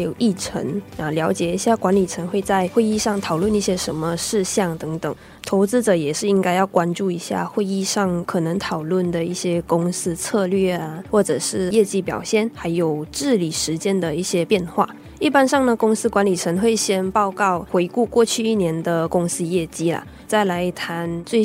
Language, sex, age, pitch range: Chinese, female, 20-39, 175-220 Hz